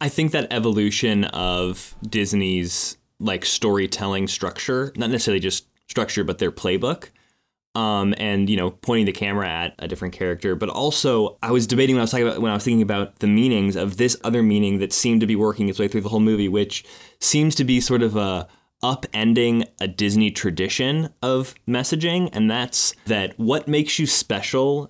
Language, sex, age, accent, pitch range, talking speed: English, male, 20-39, American, 100-130 Hz, 185 wpm